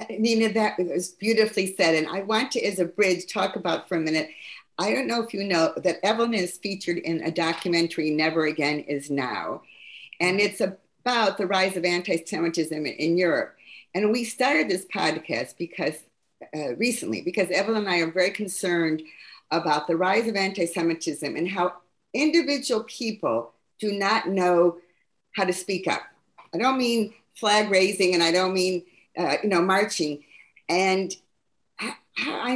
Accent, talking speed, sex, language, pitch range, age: American, 160 wpm, female, English, 165-215 Hz, 50-69